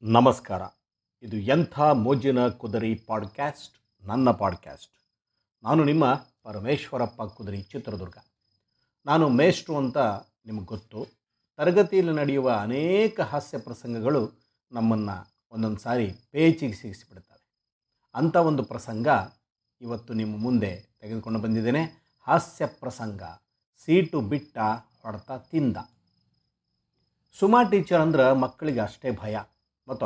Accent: native